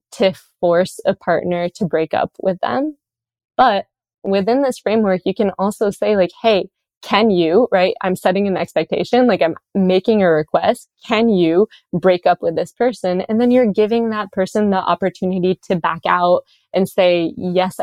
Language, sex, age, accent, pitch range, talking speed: English, female, 20-39, American, 170-200 Hz, 175 wpm